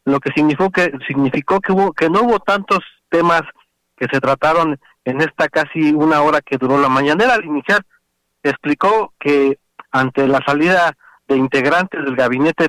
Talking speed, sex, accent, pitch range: 165 wpm, male, Mexican, 135-170 Hz